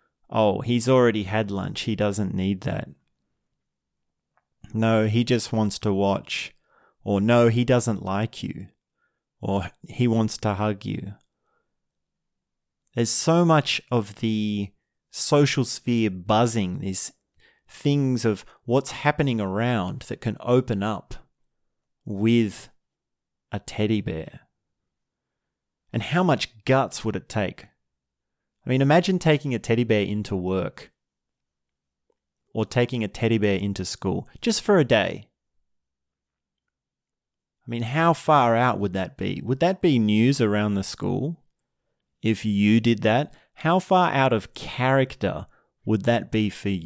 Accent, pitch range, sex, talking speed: Australian, 100-130 Hz, male, 135 wpm